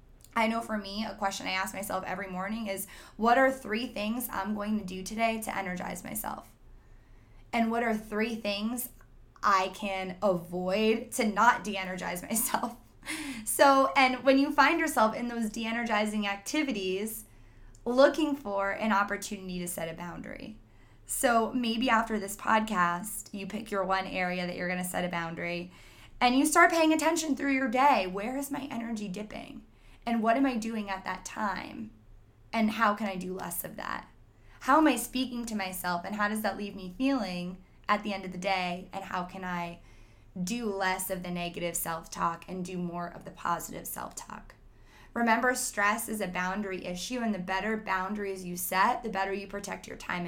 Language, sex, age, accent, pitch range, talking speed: English, female, 20-39, American, 185-230 Hz, 185 wpm